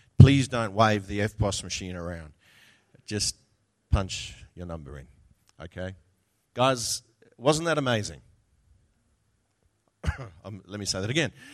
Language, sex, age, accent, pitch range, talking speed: English, male, 40-59, Australian, 95-120 Hz, 120 wpm